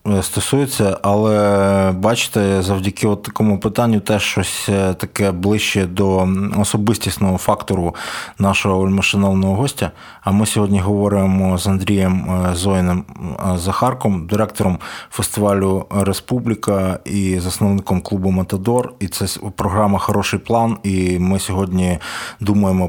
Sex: male